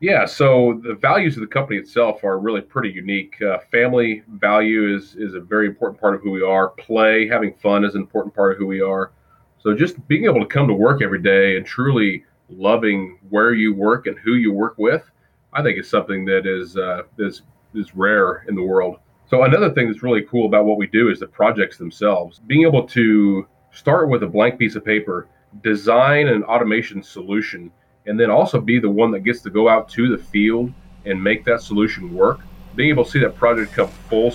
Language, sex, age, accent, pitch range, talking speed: English, male, 30-49, American, 100-115 Hz, 220 wpm